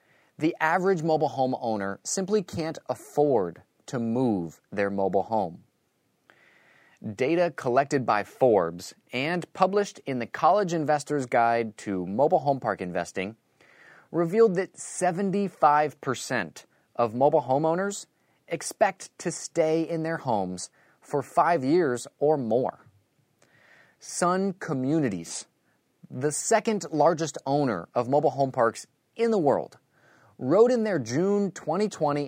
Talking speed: 120 wpm